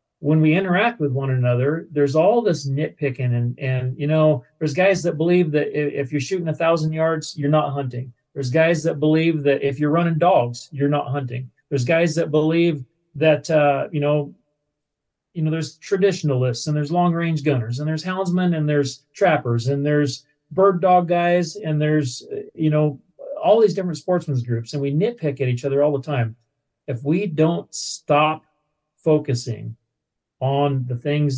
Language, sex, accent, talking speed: English, male, American, 180 wpm